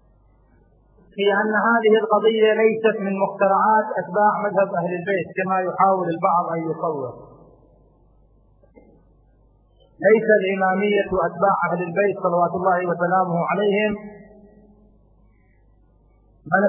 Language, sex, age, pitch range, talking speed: Arabic, male, 30-49, 170-200 Hz, 95 wpm